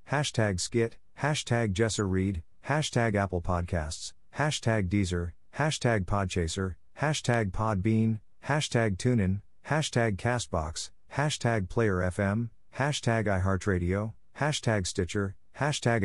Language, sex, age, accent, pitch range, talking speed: English, male, 50-69, American, 90-115 Hz, 95 wpm